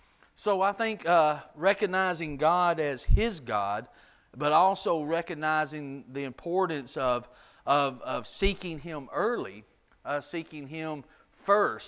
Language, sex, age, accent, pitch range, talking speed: English, male, 40-59, American, 140-180 Hz, 115 wpm